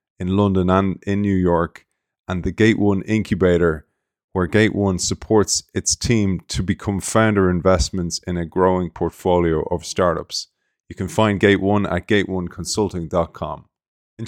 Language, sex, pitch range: English, male, 90-110 Hz